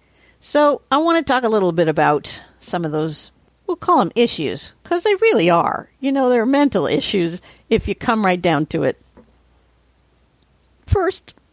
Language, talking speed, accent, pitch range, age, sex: English, 170 wpm, American, 175-240 Hz, 50-69, female